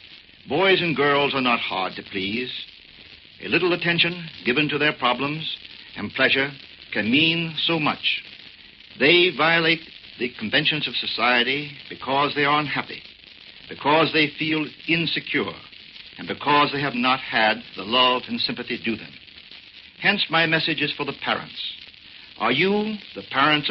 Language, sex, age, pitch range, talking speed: English, male, 60-79, 120-160 Hz, 145 wpm